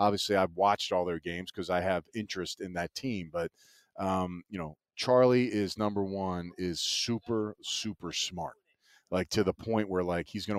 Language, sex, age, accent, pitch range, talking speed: English, male, 30-49, American, 90-105 Hz, 185 wpm